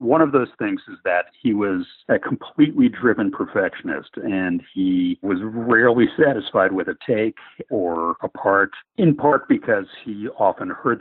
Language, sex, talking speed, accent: English, male, 160 wpm, American